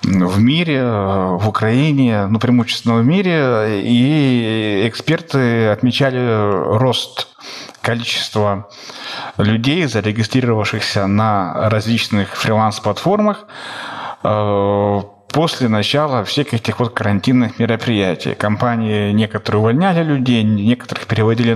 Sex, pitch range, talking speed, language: male, 110-140 Hz, 90 wpm, Ukrainian